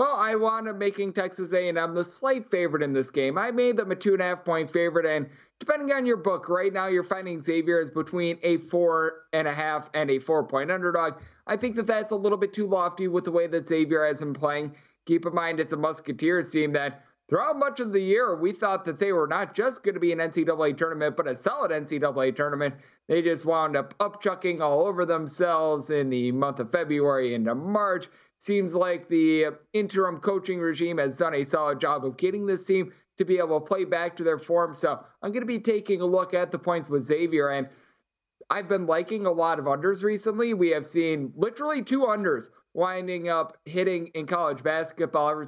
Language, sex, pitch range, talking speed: English, male, 150-190 Hz, 220 wpm